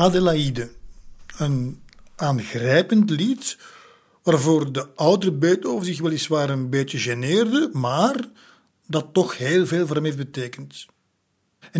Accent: Dutch